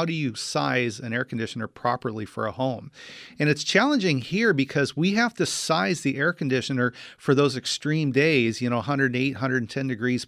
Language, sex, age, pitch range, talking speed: English, male, 40-59, 125-150 Hz, 185 wpm